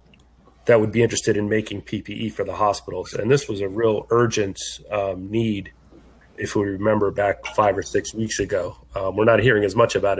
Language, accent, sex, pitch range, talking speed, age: English, American, male, 95-110 Hz, 200 wpm, 30-49